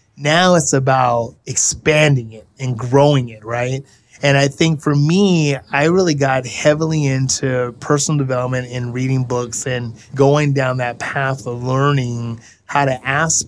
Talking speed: 150 wpm